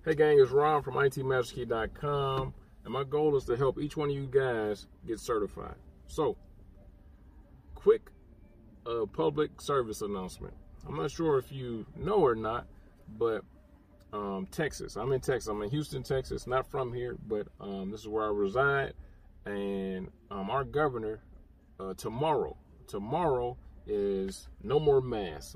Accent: American